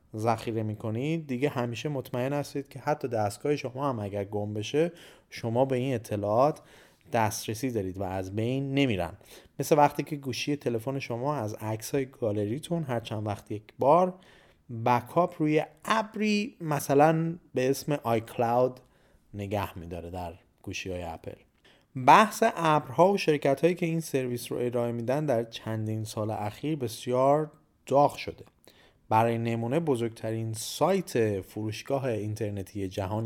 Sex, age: male, 30-49